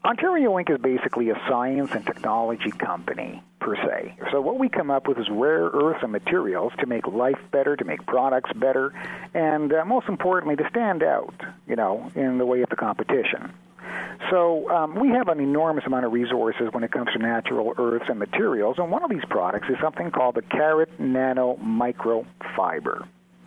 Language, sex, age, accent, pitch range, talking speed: English, male, 50-69, American, 125-170 Hz, 185 wpm